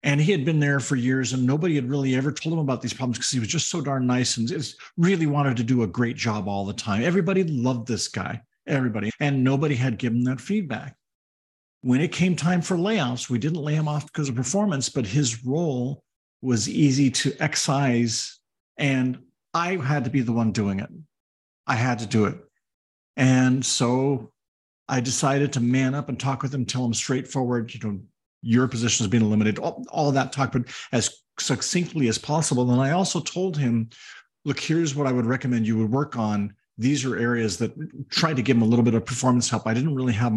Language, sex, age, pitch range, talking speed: English, male, 50-69, 120-150 Hz, 215 wpm